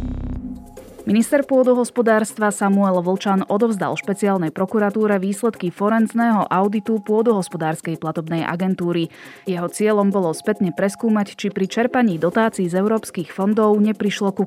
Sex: female